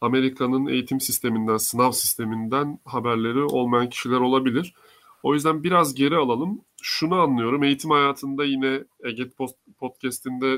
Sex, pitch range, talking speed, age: male, 115-135 Hz, 120 wpm, 30-49